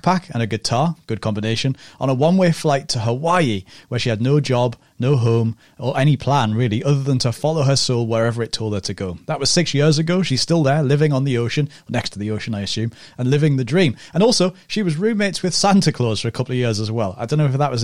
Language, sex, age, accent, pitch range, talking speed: English, male, 30-49, British, 115-150 Hz, 260 wpm